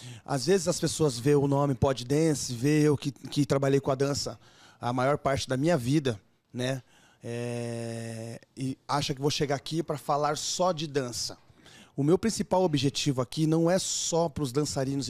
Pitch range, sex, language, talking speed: 140-170 Hz, male, Portuguese, 185 wpm